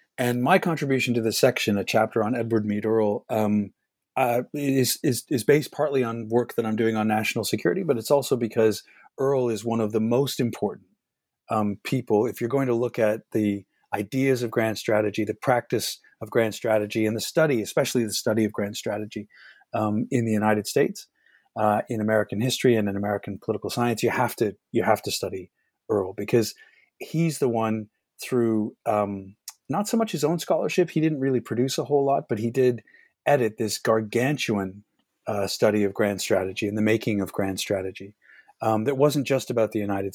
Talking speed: 195 wpm